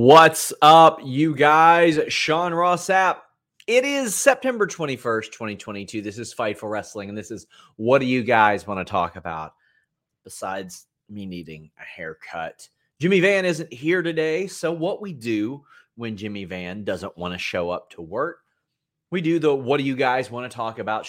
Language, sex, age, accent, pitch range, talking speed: English, male, 30-49, American, 110-150 Hz, 175 wpm